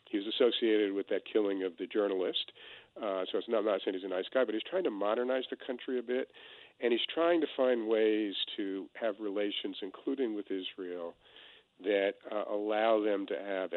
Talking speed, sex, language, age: 200 wpm, male, English, 50-69